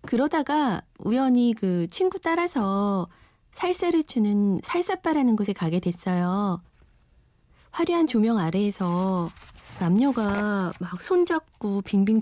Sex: female